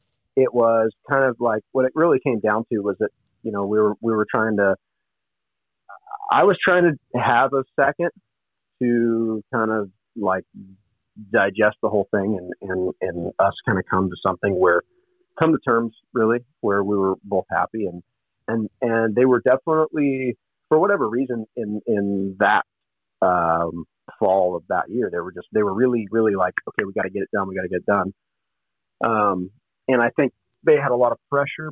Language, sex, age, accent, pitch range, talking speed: English, male, 40-59, American, 100-130 Hz, 195 wpm